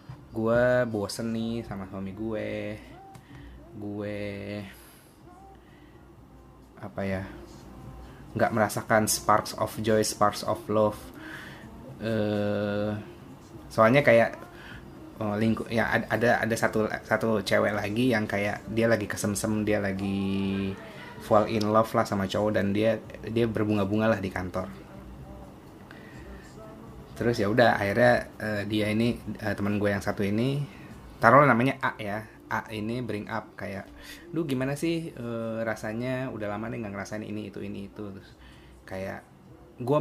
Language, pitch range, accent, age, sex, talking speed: Indonesian, 100-115 Hz, native, 20-39, male, 130 wpm